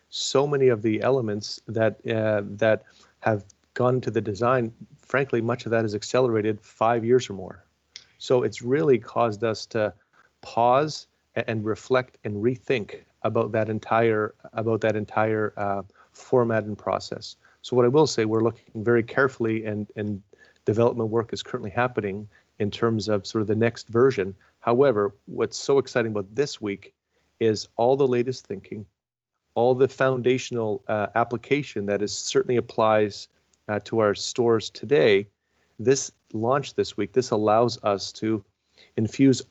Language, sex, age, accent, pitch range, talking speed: English, male, 40-59, American, 105-120 Hz, 155 wpm